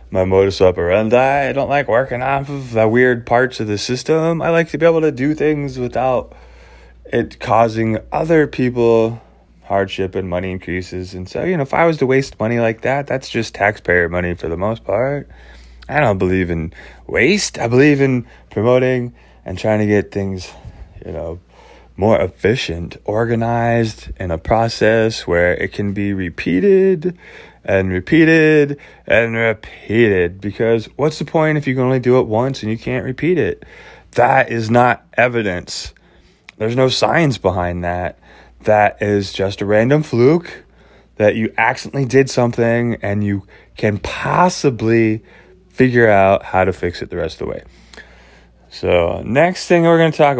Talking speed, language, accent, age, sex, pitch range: 170 wpm, English, American, 20-39, male, 95-135 Hz